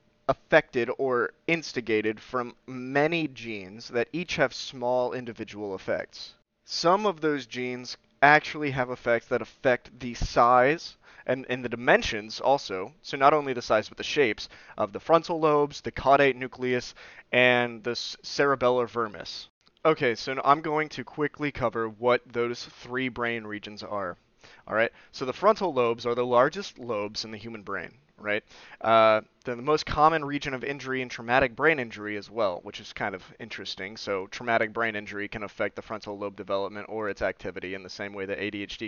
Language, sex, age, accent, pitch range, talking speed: English, male, 30-49, American, 110-140 Hz, 170 wpm